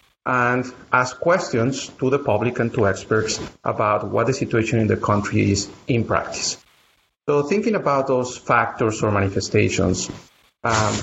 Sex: male